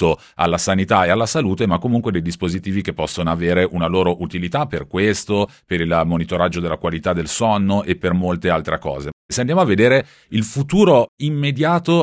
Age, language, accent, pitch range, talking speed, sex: 40-59, Italian, native, 85-105 Hz, 180 wpm, male